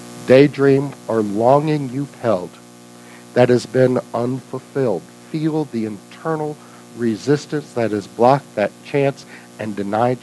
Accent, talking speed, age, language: American, 115 wpm, 60-79, English